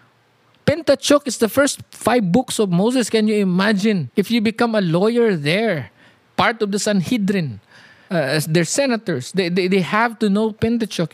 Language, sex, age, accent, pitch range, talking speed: English, male, 50-69, Filipino, 155-210 Hz, 165 wpm